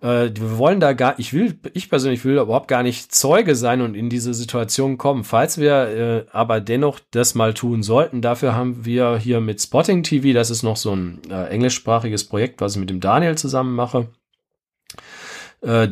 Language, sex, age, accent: German, male, 40-59, German